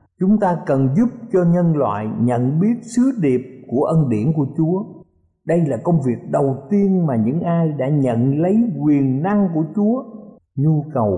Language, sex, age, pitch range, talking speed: Vietnamese, male, 50-69, 120-200 Hz, 185 wpm